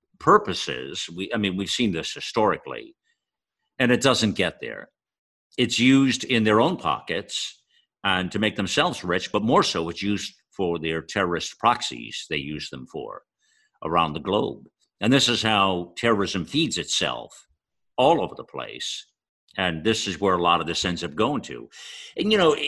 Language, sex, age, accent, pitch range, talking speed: English, male, 50-69, American, 110-155 Hz, 175 wpm